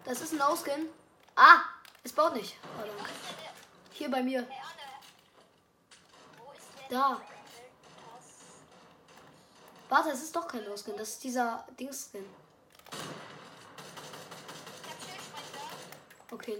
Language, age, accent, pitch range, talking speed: German, 20-39, German, 210-270 Hz, 85 wpm